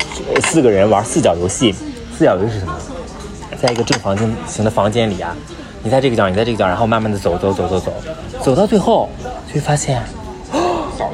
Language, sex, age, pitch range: Chinese, male, 30-49, 90-120 Hz